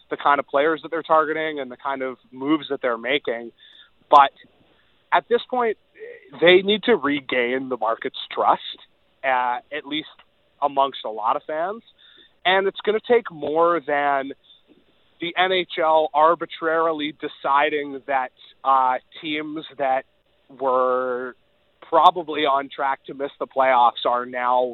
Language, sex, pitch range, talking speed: English, male, 130-170 Hz, 145 wpm